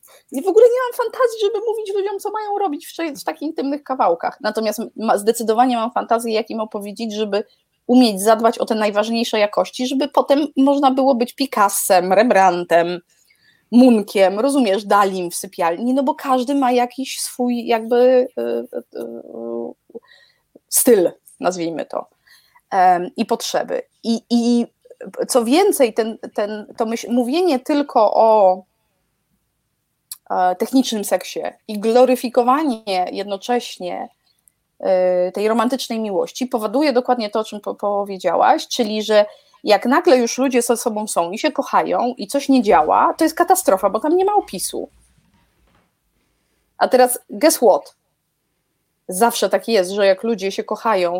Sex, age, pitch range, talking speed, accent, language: female, 20-39, 205-270 Hz, 130 wpm, native, Polish